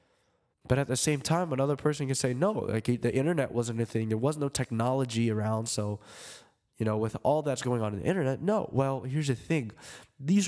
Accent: American